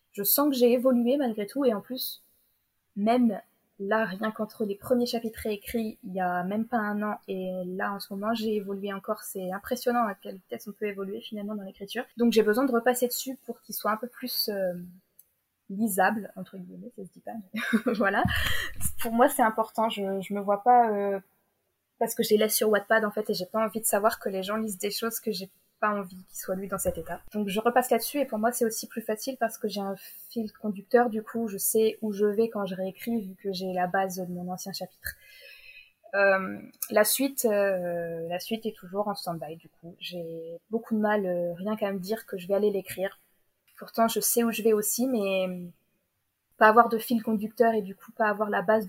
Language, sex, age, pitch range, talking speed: French, female, 20-39, 195-230 Hz, 230 wpm